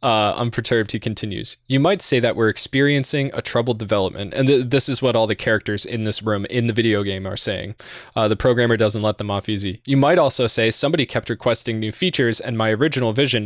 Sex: male